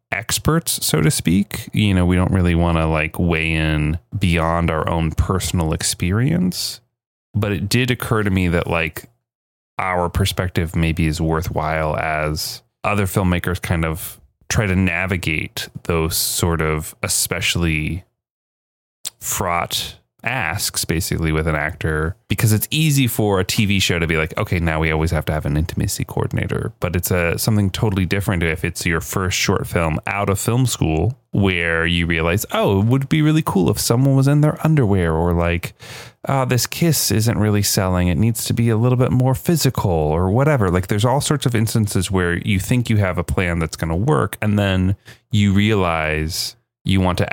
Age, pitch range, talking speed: 30-49, 85-115 Hz, 185 wpm